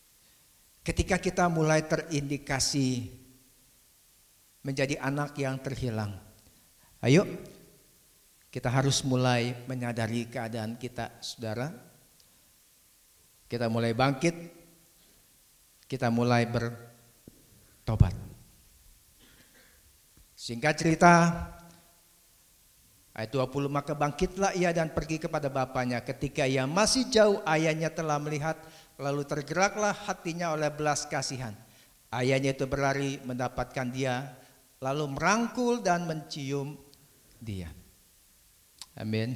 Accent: native